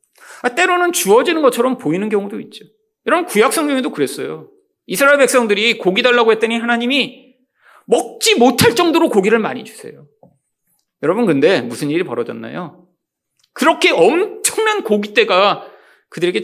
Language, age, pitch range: Korean, 40-59, 190-310 Hz